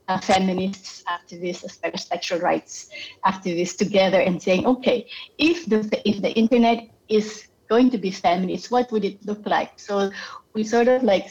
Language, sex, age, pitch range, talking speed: English, female, 30-49, 185-225 Hz, 165 wpm